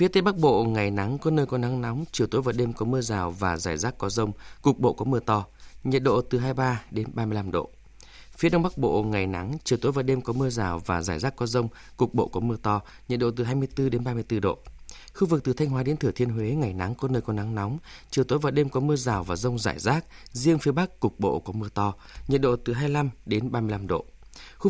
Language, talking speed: Vietnamese, 260 wpm